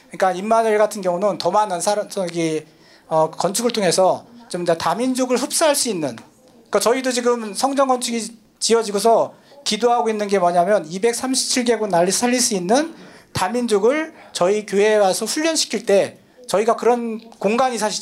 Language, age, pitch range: Korean, 40-59, 185-235 Hz